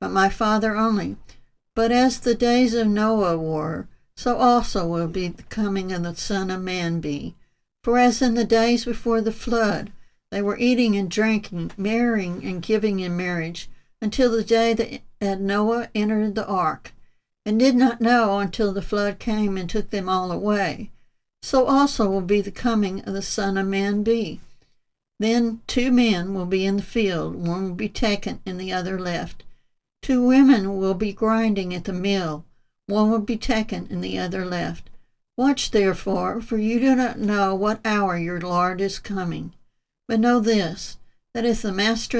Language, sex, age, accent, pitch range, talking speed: English, female, 60-79, American, 185-230 Hz, 180 wpm